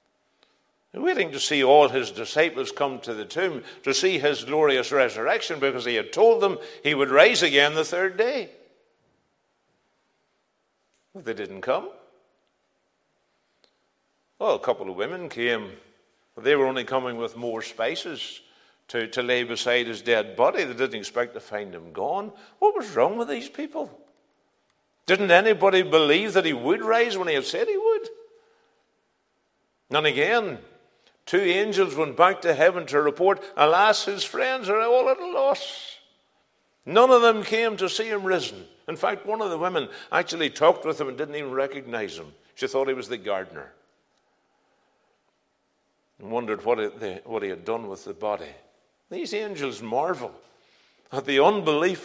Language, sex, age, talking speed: English, male, 60-79, 160 wpm